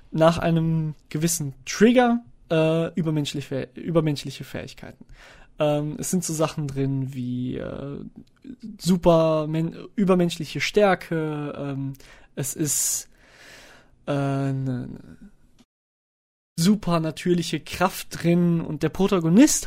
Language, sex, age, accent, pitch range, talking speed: German, male, 20-39, German, 150-185 Hz, 100 wpm